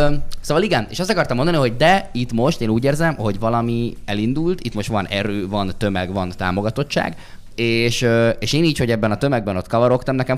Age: 20-39